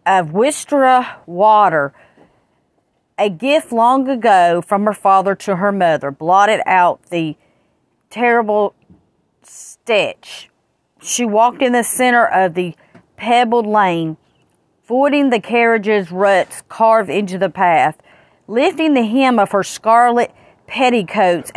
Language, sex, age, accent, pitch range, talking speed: English, female, 40-59, American, 185-235 Hz, 115 wpm